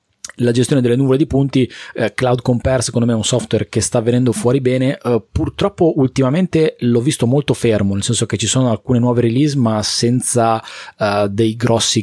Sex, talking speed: male, 195 wpm